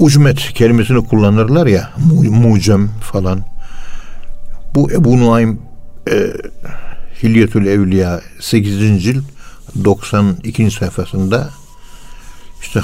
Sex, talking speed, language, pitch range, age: male, 75 wpm, Turkish, 95-115 Hz, 60-79